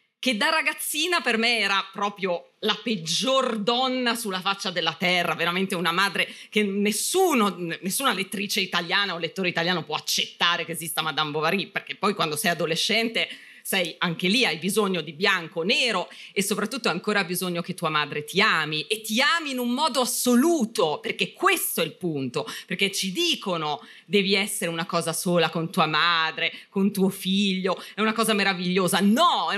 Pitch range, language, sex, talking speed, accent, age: 180-245 Hz, Italian, female, 170 wpm, native, 30-49